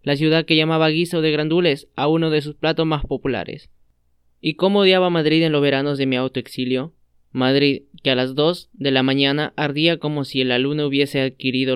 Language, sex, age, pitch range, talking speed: Spanish, male, 20-39, 130-155 Hz, 205 wpm